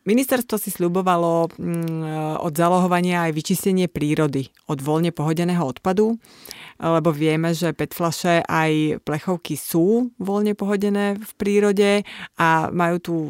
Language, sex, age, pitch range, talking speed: Slovak, female, 30-49, 160-200 Hz, 115 wpm